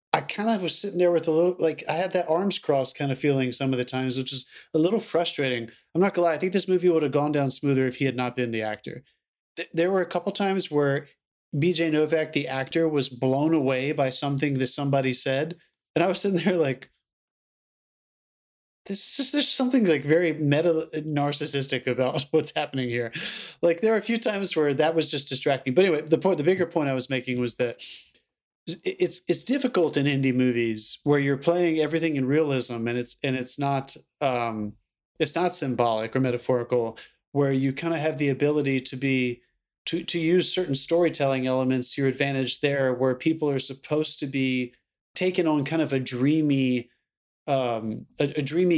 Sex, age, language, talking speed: male, 30-49, English, 205 wpm